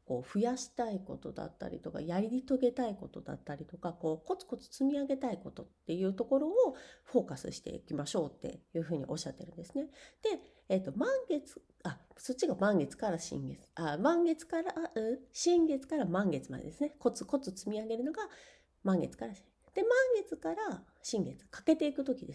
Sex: female